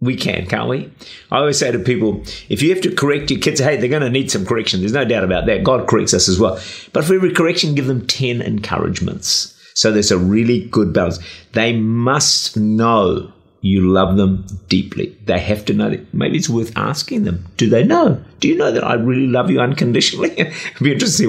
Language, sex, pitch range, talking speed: English, male, 95-135 Hz, 230 wpm